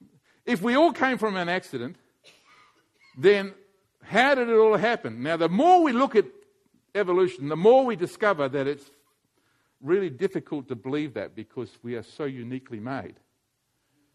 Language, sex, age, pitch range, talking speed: English, male, 50-69, 145-215 Hz, 155 wpm